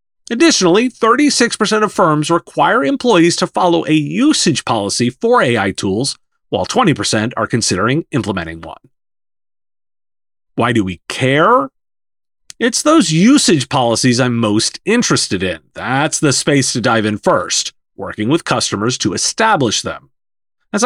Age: 40-59